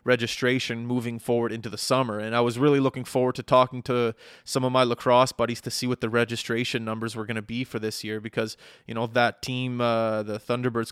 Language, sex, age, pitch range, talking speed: English, male, 20-39, 120-145 Hz, 225 wpm